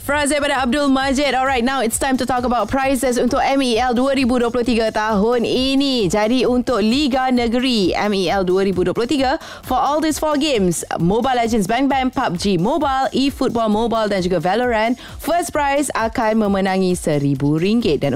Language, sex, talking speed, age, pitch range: Malay, female, 150 wpm, 20-39, 185-265 Hz